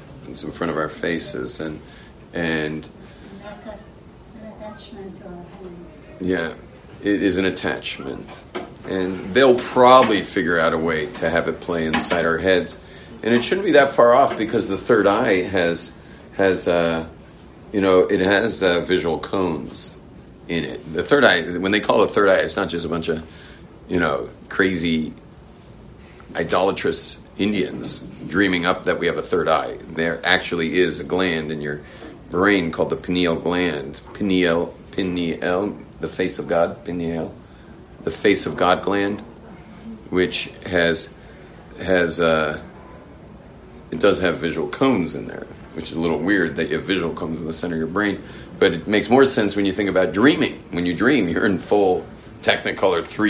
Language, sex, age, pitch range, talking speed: English, male, 40-59, 80-100 Hz, 165 wpm